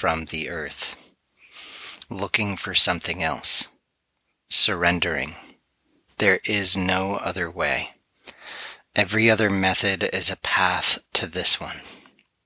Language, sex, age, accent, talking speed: English, male, 30-49, American, 105 wpm